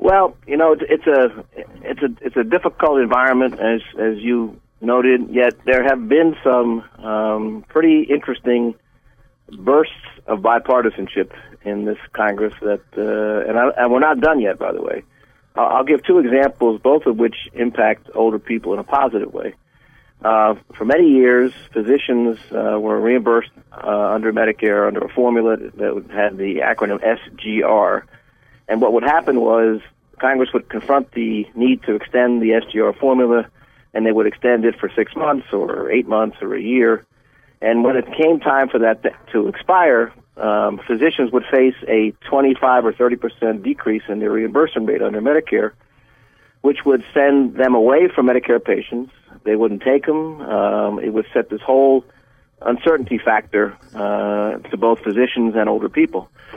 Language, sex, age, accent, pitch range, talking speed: English, male, 50-69, American, 110-135 Hz, 165 wpm